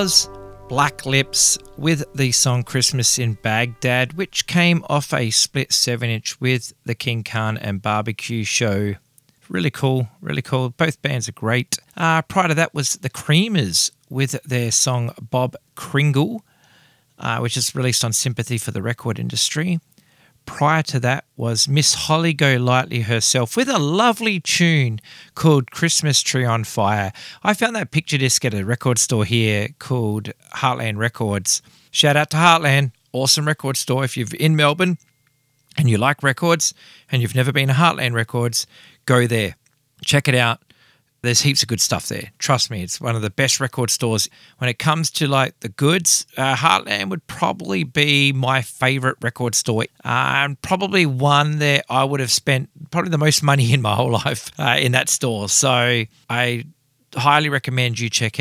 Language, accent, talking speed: English, Australian, 170 wpm